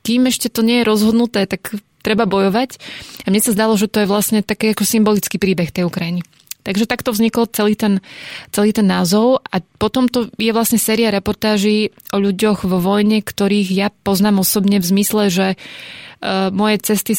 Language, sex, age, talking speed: Slovak, female, 20-39, 175 wpm